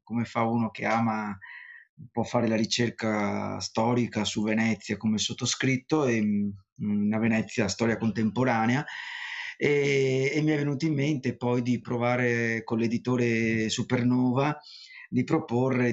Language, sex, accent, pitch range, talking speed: Italian, male, native, 110-125 Hz, 130 wpm